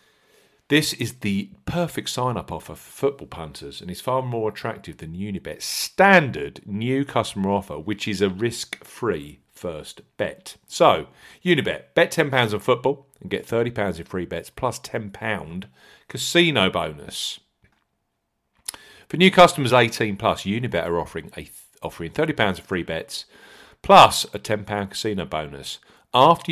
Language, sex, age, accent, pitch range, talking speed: English, male, 40-59, British, 95-145 Hz, 135 wpm